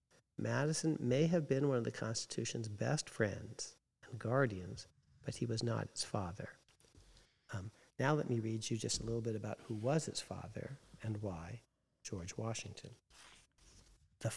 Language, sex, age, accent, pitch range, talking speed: English, male, 50-69, American, 110-140 Hz, 160 wpm